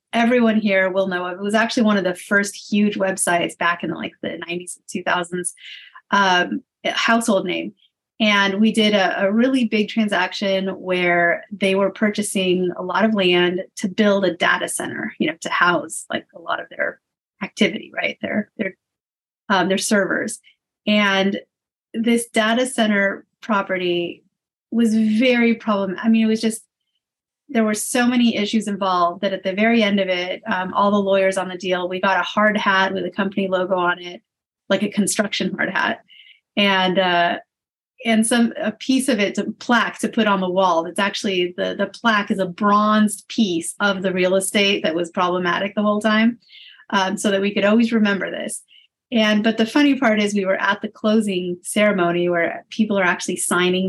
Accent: American